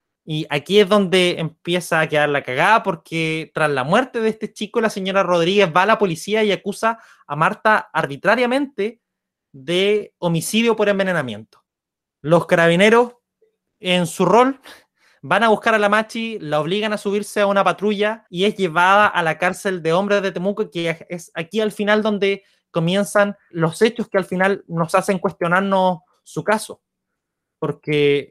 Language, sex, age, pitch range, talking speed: Spanish, male, 20-39, 165-210 Hz, 165 wpm